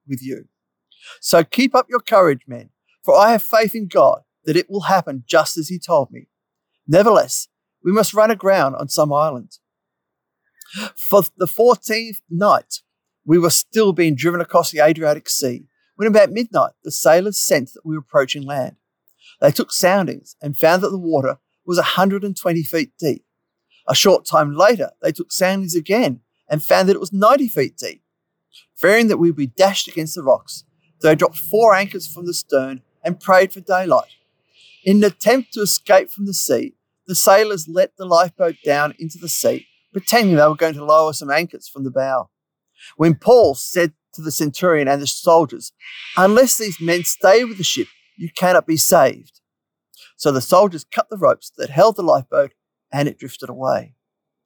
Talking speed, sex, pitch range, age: 180 wpm, male, 155-210 Hz, 40-59